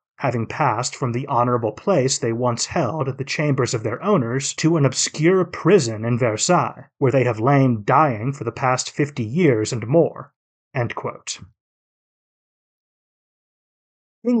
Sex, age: male, 30-49